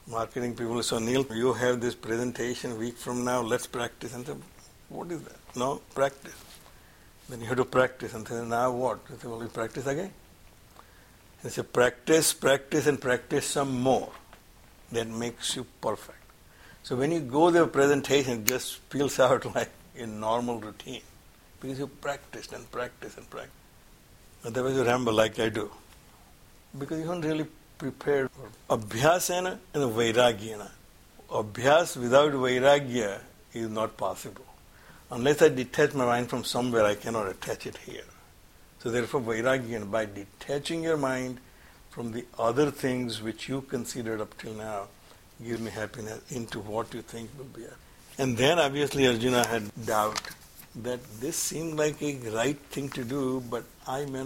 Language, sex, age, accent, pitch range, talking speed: English, male, 60-79, Indian, 115-140 Hz, 165 wpm